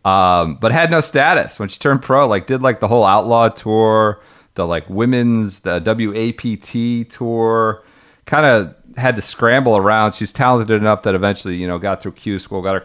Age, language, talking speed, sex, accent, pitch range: 40-59, English, 190 wpm, male, American, 90-115 Hz